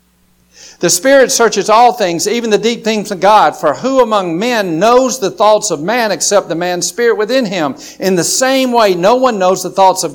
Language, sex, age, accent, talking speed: English, male, 50-69, American, 215 wpm